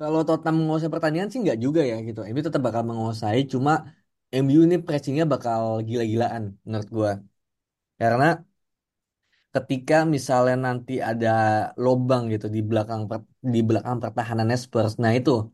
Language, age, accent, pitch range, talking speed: Indonesian, 20-39, native, 110-140 Hz, 145 wpm